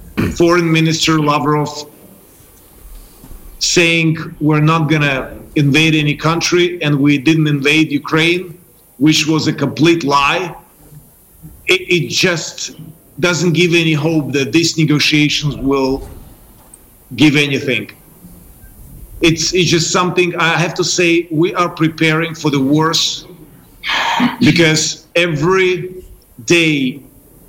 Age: 40-59